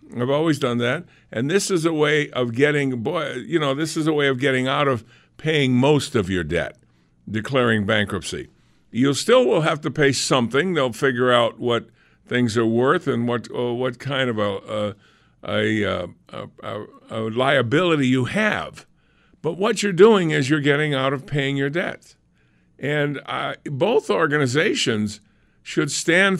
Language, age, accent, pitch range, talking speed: English, 50-69, American, 120-155 Hz, 175 wpm